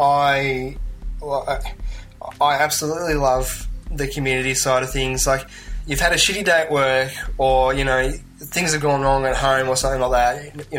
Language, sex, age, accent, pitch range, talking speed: English, male, 10-29, Australian, 125-145 Hz, 170 wpm